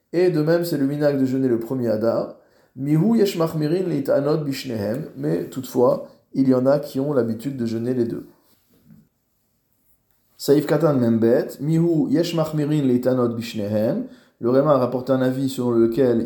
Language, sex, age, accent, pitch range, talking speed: French, male, 20-39, French, 115-145 Hz, 130 wpm